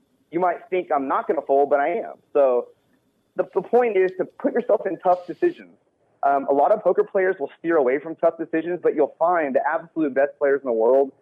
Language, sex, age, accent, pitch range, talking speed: English, male, 30-49, American, 140-185 Hz, 235 wpm